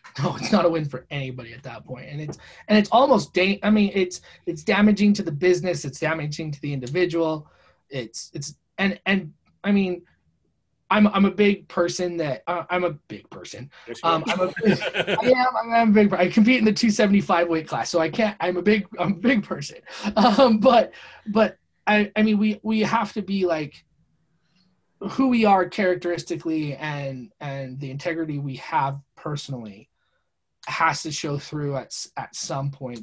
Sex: male